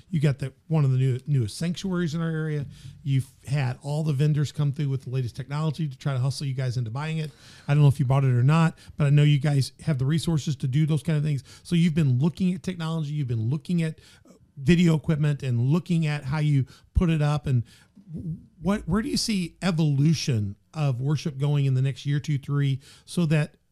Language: English